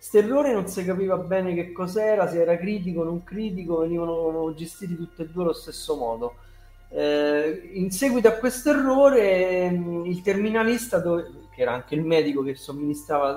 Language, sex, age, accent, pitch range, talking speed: Italian, male, 30-49, native, 150-190 Hz, 175 wpm